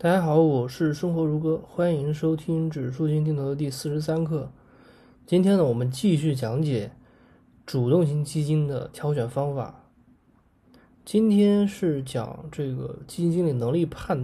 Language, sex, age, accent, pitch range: Chinese, male, 20-39, native, 130-170 Hz